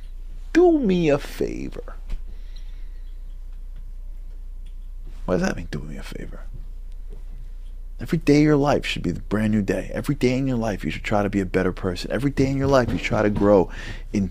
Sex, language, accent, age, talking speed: male, English, American, 40-59, 195 wpm